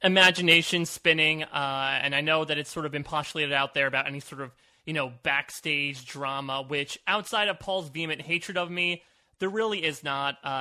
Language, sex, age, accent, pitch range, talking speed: English, male, 20-39, American, 135-165 Hz, 200 wpm